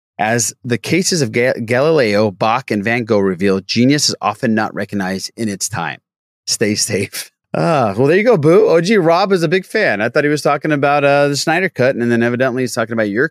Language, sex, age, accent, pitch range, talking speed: English, male, 30-49, American, 105-145 Hz, 225 wpm